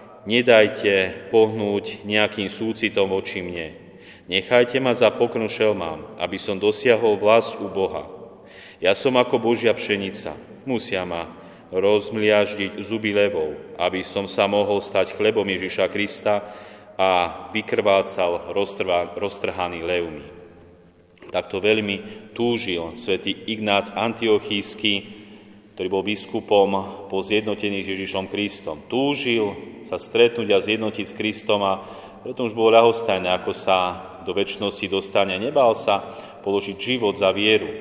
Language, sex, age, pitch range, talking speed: Slovak, male, 30-49, 95-110 Hz, 120 wpm